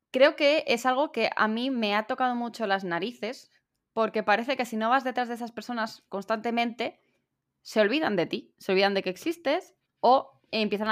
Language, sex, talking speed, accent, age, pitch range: Spanish, female, 190 wpm, Spanish, 10-29, 195-250 Hz